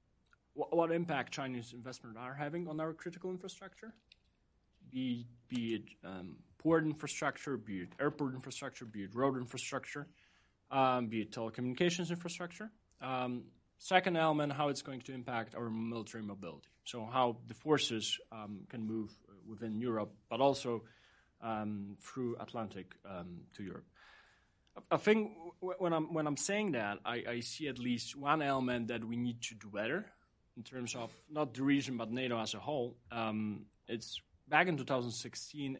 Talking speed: 165 wpm